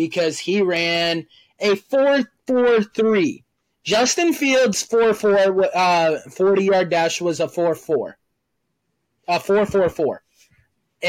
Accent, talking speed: American, 80 wpm